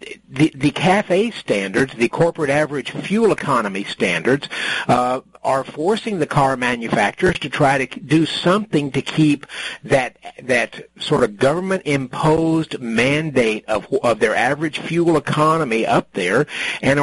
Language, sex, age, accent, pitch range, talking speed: English, male, 50-69, American, 135-170 Hz, 135 wpm